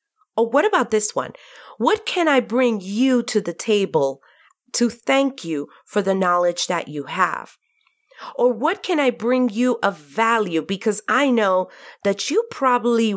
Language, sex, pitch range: English, female, 180-255 Hz